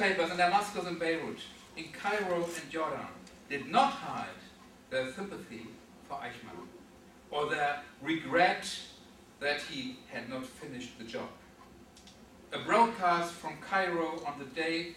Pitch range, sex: 145-180 Hz, male